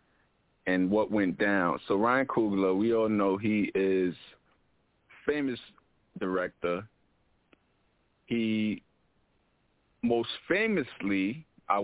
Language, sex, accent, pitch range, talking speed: English, male, American, 100-150 Hz, 90 wpm